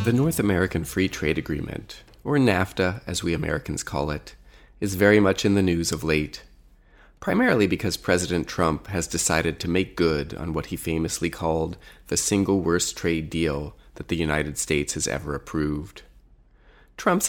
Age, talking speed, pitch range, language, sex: 30-49, 165 wpm, 85-110 Hz, English, male